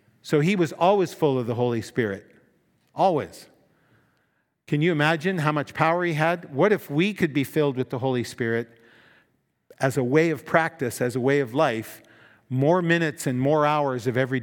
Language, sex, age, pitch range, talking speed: English, male, 50-69, 125-160 Hz, 185 wpm